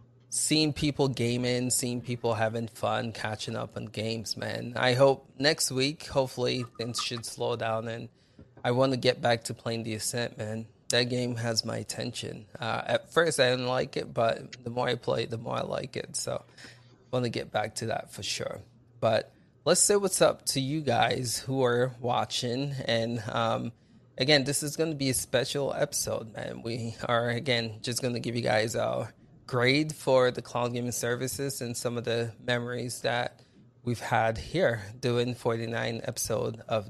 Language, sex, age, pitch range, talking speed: English, male, 20-39, 115-130 Hz, 190 wpm